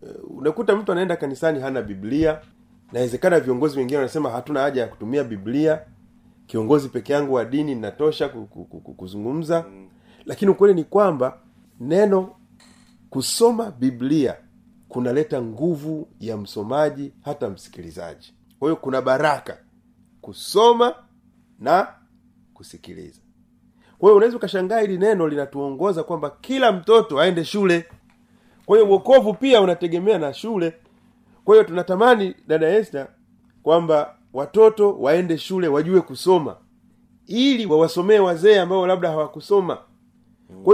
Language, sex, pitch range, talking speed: Swahili, male, 145-225 Hz, 115 wpm